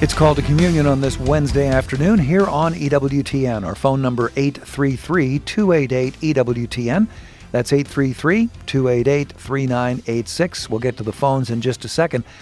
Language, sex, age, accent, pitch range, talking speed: English, male, 50-69, American, 125-160 Hz, 125 wpm